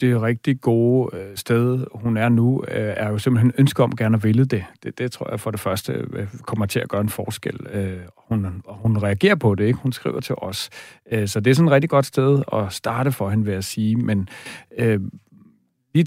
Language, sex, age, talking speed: Danish, male, 40-59, 215 wpm